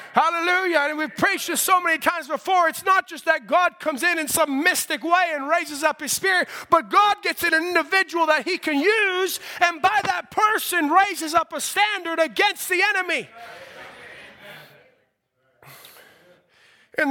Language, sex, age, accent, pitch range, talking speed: English, male, 30-49, American, 255-330 Hz, 160 wpm